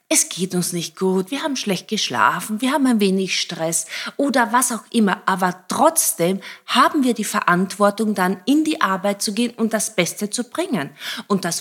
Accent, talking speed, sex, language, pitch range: German, 190 wpm, female, German, 185-235 Hz